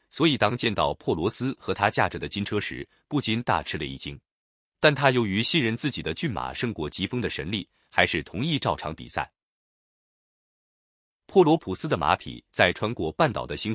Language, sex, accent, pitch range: Chinese, male, native, 90-130 Hz